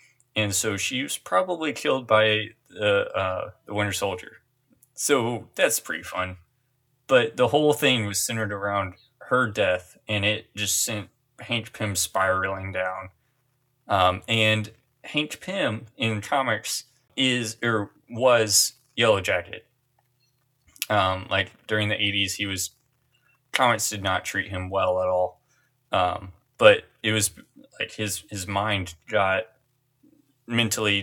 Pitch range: 100-130 Hz